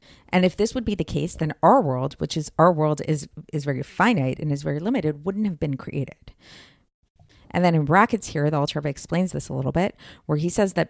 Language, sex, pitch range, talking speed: English, female, 145-180 Hz, 230 wpm